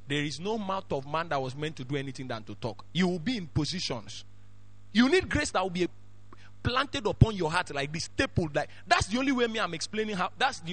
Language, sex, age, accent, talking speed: English, male, 30-49, Nigerian, 245 wpm